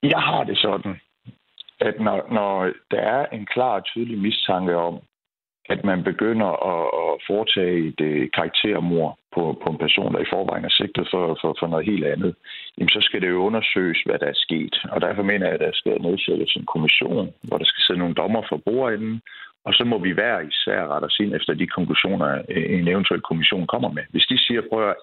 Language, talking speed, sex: Danish, 205 wpm, male